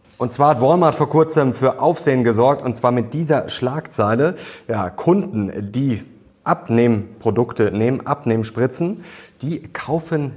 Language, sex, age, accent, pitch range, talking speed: German, male, 30-49, German, 110-140 Hz, 125 wpm